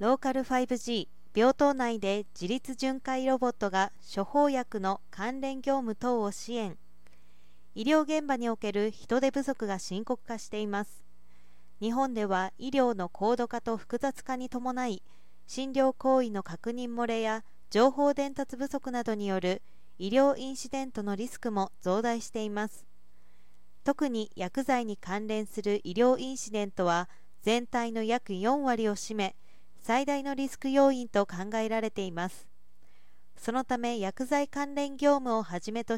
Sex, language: female, Japanese